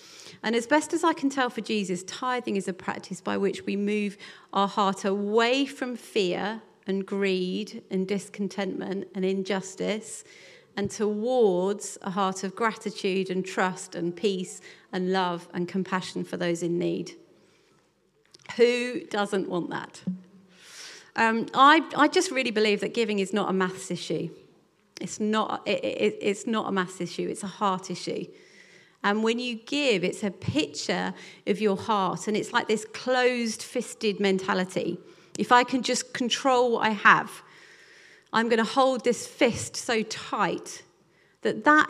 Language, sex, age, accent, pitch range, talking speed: English, female, 40-59, British, 190-240 Hz, 155 wpm